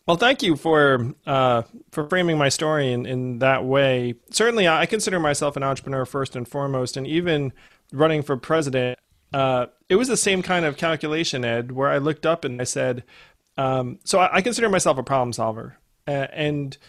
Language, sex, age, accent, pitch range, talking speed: English, male, 30-49, American, 130-155 Hz, 185 wpm